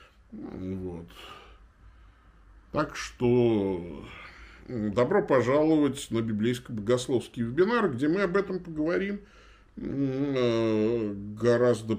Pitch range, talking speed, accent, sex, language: 105-155 Hz, 70 wpm, native, male, Russian